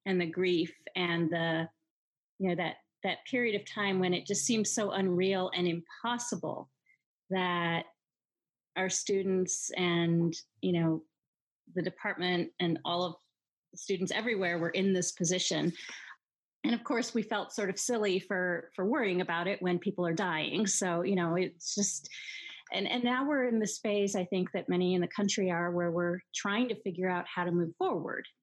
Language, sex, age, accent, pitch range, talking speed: English, female, 30-49, American, 175-210 Hz, 180 wpm